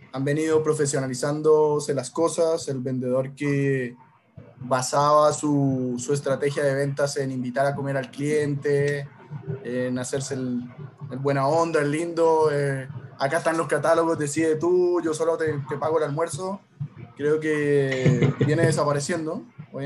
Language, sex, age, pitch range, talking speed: Spanish, male, 20-39, 135-155 Hz, 140 wpm